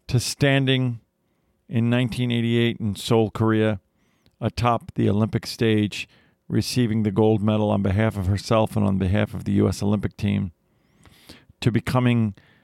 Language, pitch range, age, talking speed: English, 105-115 Hz, 50-69, 140 wpm